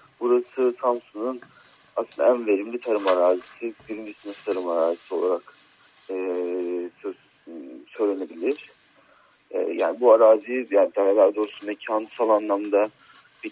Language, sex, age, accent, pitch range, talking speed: Turkish, male, 40-59, native, 95-125 Hz, 105 wpm